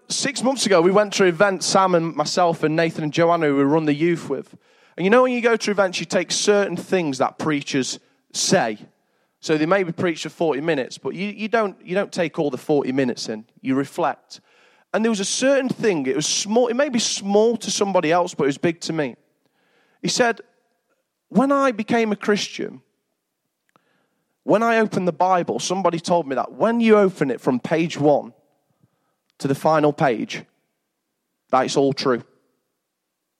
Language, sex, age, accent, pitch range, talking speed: English, male, 20-39, British, 155-225 Hz, 200 wpm